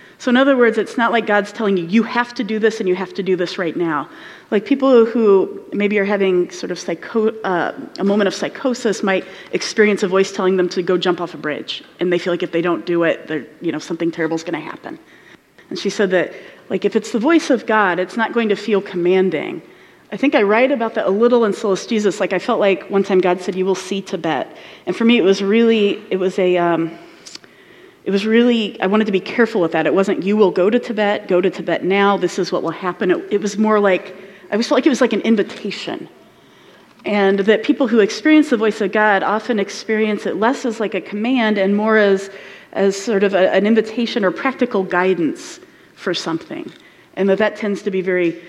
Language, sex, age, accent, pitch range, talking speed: English, female, 30-49, American, 185-230 Hz, 240 wpm